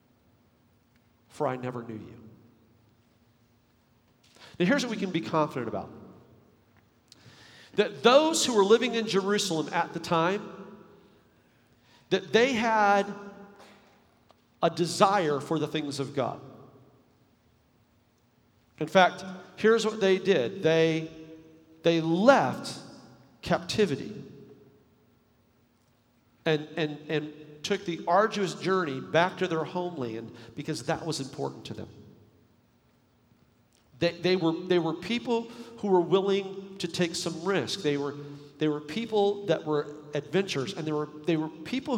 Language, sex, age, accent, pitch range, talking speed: English, male, 50-69, American, 125-190 Hz, 125 wpm